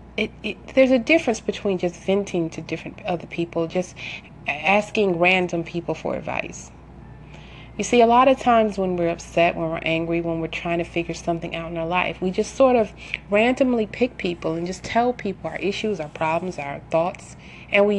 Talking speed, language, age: 185 wpm, English, 30-49